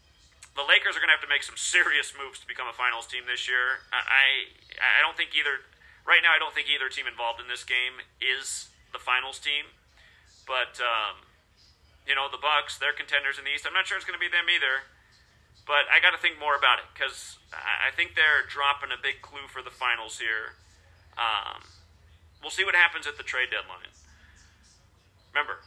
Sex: male